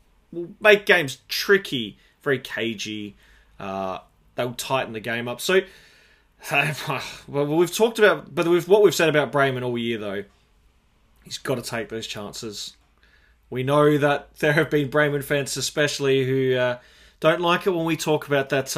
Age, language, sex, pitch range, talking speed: 20-39, English, male, 120-150 Hz, 165 wpm